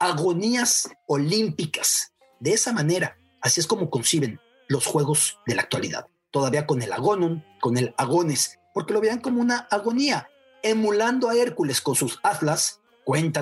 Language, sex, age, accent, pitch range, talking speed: English, male, 40-59, Mexican, 145-220 Hz, 150 wpm